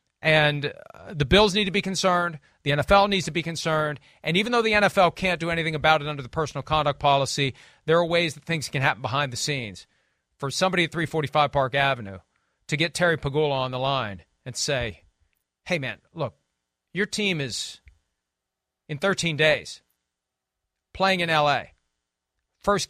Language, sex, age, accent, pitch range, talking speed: English, male, 40-59, American, 120-175 Hz, 175 wpm